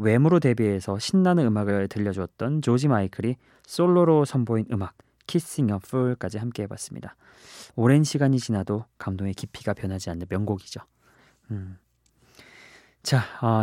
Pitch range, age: 105-150 Hz, 20-39